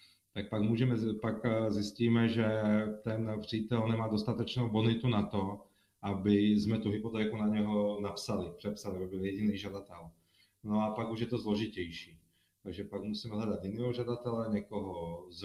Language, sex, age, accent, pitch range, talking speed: Czech, male, 30-49, native, 95-115 Hz, 155 wpm